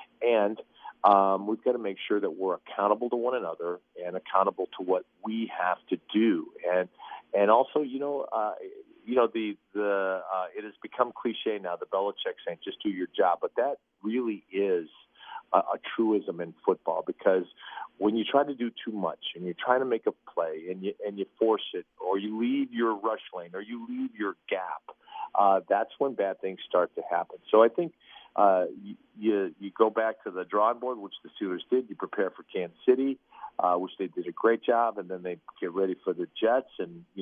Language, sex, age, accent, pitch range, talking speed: English, male, 40-59, American, 100-130 Hz, 215 wpm